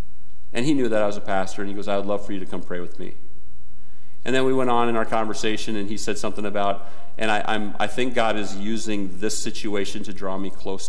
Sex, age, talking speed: male, 40-59, 265 wpm